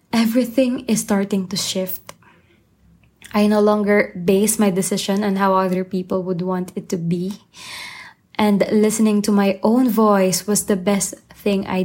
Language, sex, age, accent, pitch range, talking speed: English, female, 20-39, Filipino, 195-225 Hz, 155 wpm